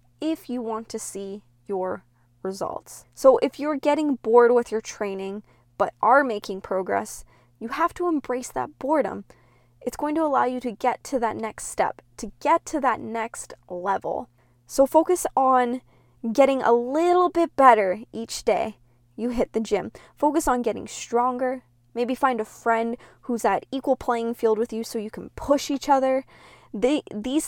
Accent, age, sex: American, 10-29, female